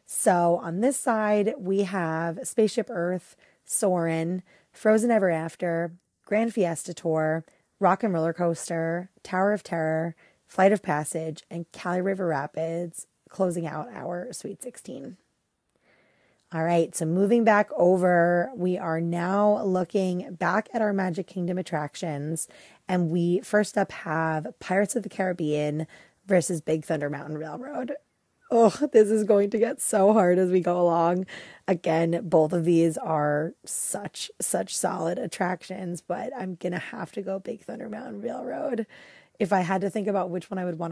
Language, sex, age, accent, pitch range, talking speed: English, female, 20-39, American, 165-205 Hz, 155 wpm